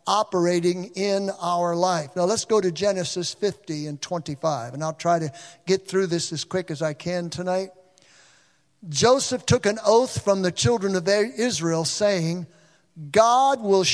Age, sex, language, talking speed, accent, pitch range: 50-69, male, English, 160 wpm, American, 165-215 Hz